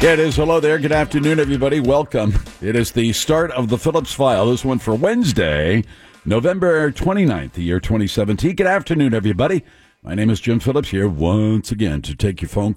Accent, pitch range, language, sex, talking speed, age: American, 95-135 Hz, English, male, 190 wpm, 60-79